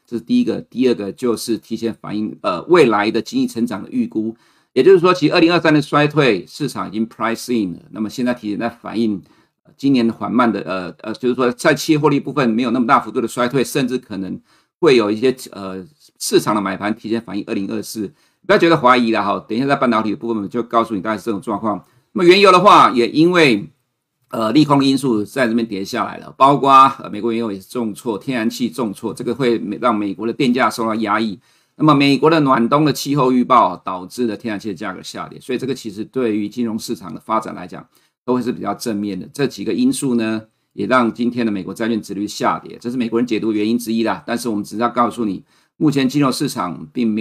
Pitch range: 110-130 Hz